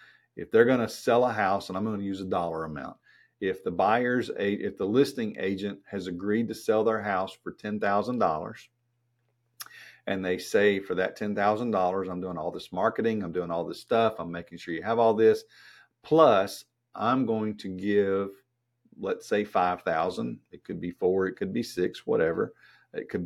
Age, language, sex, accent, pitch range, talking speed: 50-69, English, male, American, 95-115 Hz, 200 wpm